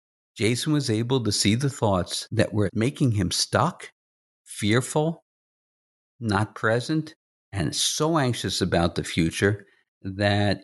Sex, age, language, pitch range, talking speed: male, 50-69, English, 90-120 Hz, 125 wpm